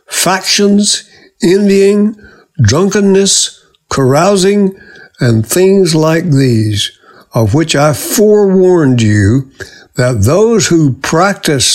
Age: 60-79